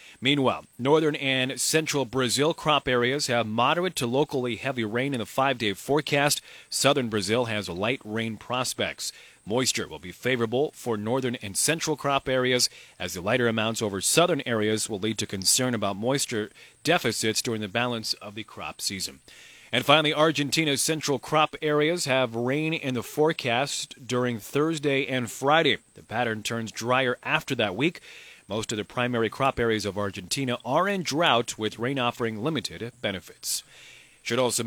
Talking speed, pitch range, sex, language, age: 165 wpm, 110-135 Hz, male, English, 30-49